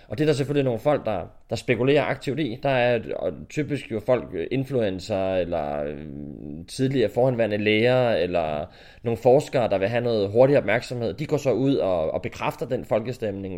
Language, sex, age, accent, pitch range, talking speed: Danish, male, 20-39, native, 95-125 Hz, 175 wpm